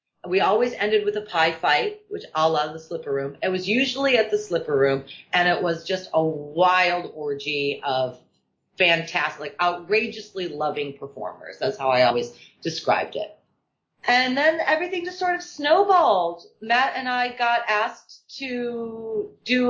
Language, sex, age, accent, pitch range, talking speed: English, female, 30-49, American, 170-255 Hz, 160 wpm